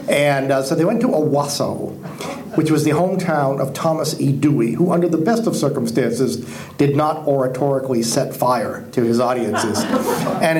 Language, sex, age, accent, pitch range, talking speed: English, male, 50-69, American, 120-160 Hz, 170 wpm